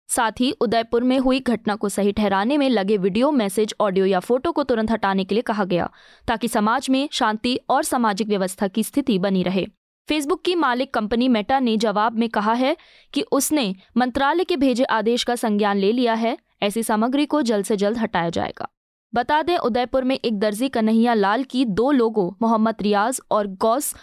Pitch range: 210-260 Hz